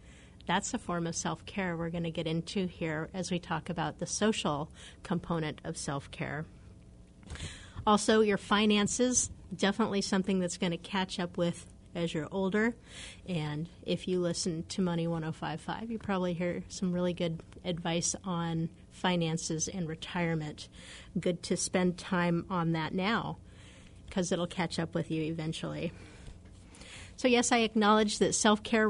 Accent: American